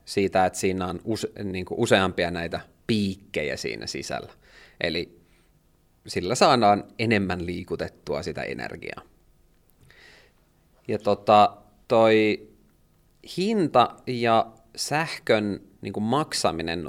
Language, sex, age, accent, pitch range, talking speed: Finnish, male, 30-49, native, 90-110 Hz, 80 wpm